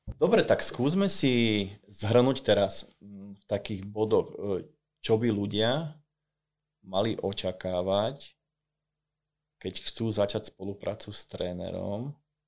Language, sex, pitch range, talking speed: Slovak, male, 100-110 Hz, 95 wpm